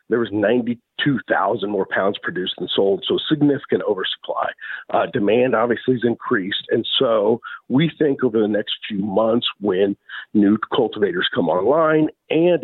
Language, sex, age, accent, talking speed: English, male, 50-69, American, 145 wpm